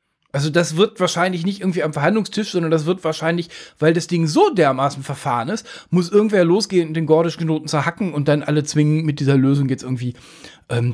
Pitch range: 140-185 Hz